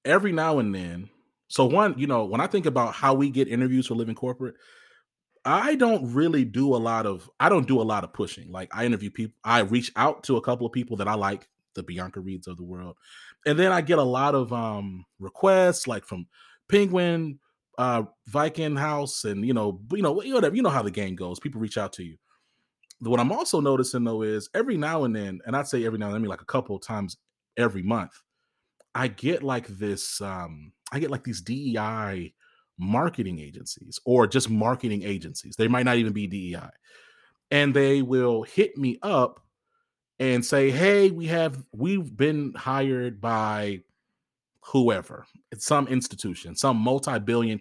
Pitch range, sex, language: 105-140 Hz, male, English